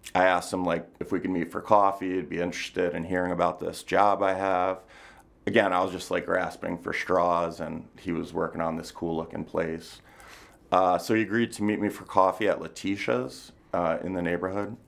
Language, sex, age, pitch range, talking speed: English, male, 30-49, 85-95 Hz, 210 wpm